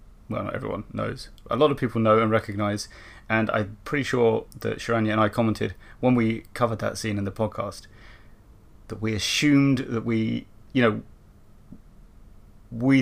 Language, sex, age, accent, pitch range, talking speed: English, male, 30-49, British, 100-125 Hz, 165 wpm